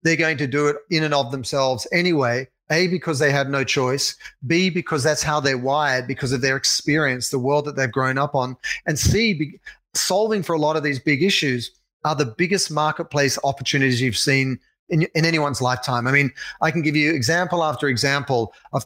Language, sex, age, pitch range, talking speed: English, male, 40-59, 140-175 Hz, 205 wpm